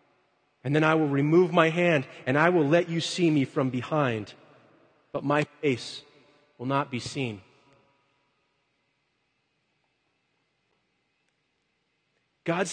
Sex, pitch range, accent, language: male, 125-170 Hz, American, English